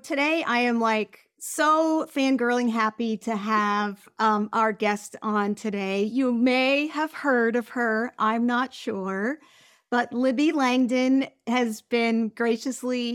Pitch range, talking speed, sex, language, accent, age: 215-255 Hz, 130 wpm, female, English, American, 40-59